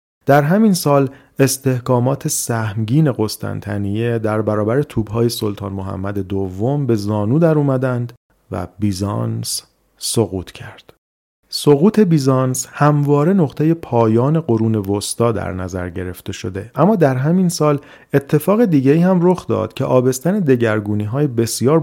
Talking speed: 125 wpm